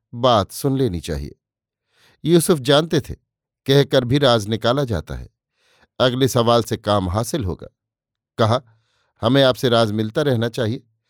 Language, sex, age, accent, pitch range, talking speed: Hindi, male, 50-69, native, 115-135 Hz, 140 wpm